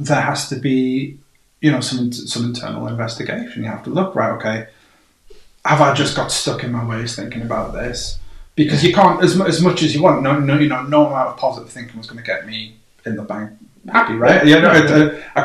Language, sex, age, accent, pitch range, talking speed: English, male, 30-49, British, 110-135 Hz, 235 wpm